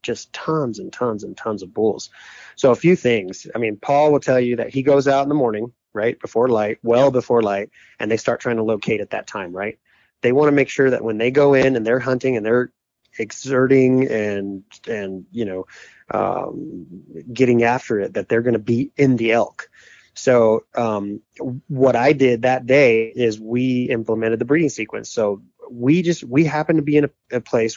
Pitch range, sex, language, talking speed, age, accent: 115-135 Hz, male, English, 210 wpm, 20-39, American